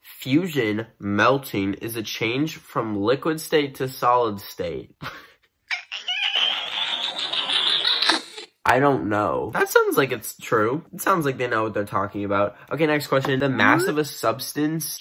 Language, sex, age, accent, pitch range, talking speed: English, male, 10-29, American, 105-140 Hz, 145 wpm